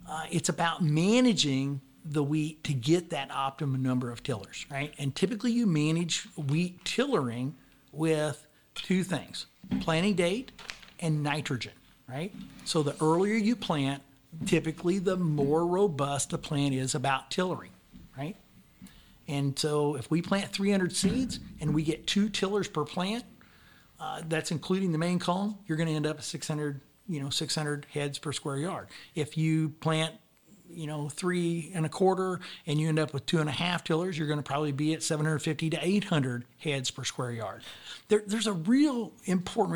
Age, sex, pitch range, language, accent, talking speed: 50-69, male, 145-180 Hz, English, American, 170 wpm